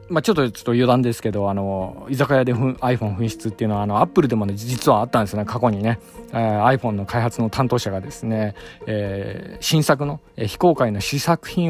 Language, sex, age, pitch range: Japanese, male, 20-39, 105-135 Hz